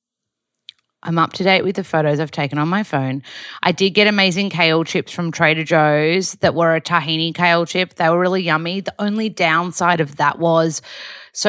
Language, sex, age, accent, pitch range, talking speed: English, female, 30-49, Australian, 155-195 Hz, 200 wpm